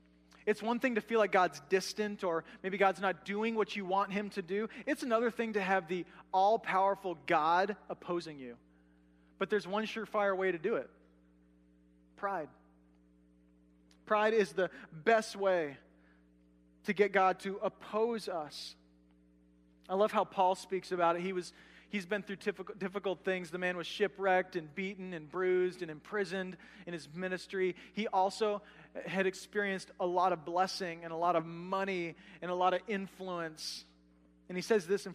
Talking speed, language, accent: 170 wpm, English, American